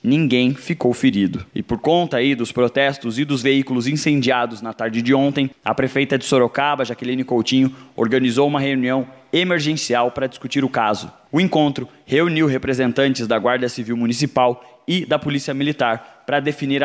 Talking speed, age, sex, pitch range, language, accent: 160 wpm, 20-39, male, 120-140 Hz, Portuguese, Brazilian